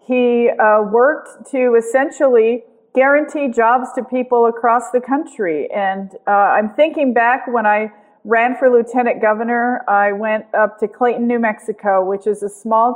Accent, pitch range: American, 210-250 Hz